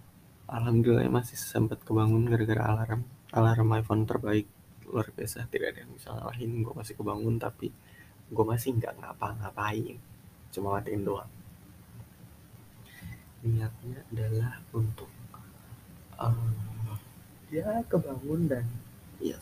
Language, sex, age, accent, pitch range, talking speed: English, male, 20-39, Indonesian, 110-130 Hz, 110 wpm